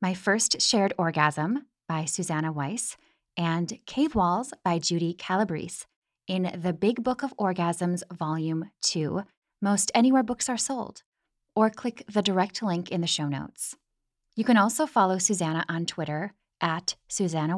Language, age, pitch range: English, 10-29, 170-225 Hz